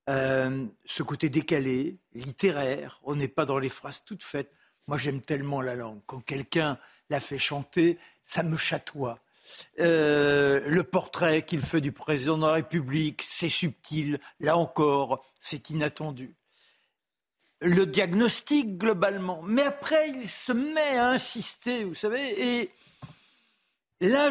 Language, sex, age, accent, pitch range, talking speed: French, male, 60-79, French, 155-210 Hz, 140 wpm